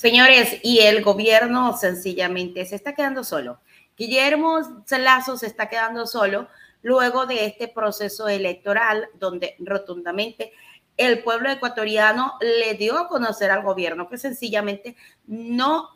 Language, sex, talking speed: Spanish, female, 130 wpm